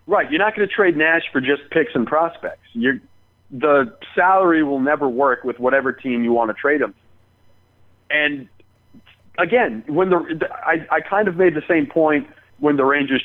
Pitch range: 130-200 Hz